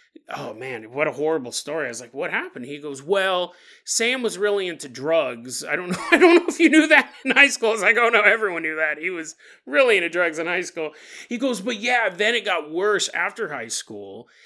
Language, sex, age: English, male, 30-49